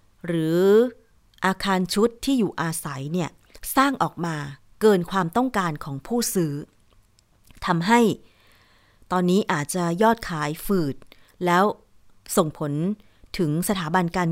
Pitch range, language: 165-225 Hz, Thai